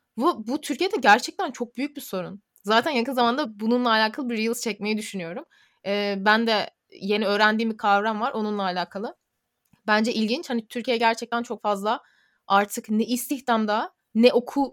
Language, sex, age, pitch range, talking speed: Turkish, female, 20-39, 195-235 Hz, 160 wpm